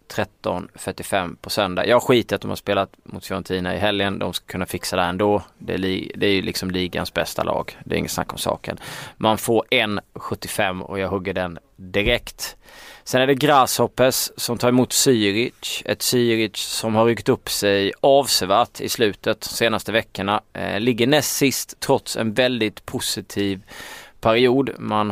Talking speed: 180 wpm